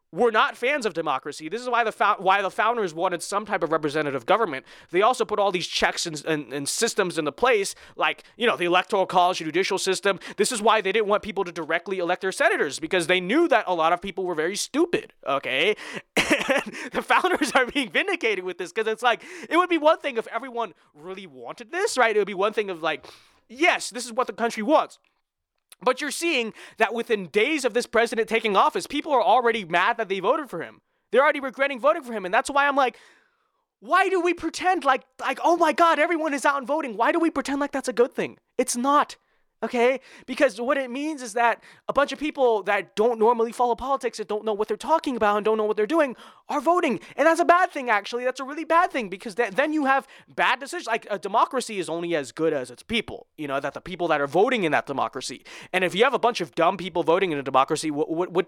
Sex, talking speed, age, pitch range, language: male, 245 wpm, 20-39, 190-290 Hz, English